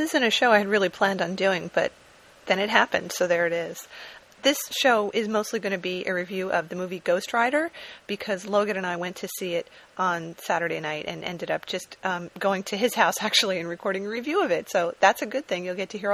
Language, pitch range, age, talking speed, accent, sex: English, 180-225 Hz, 30-49, 255 wpm, American, female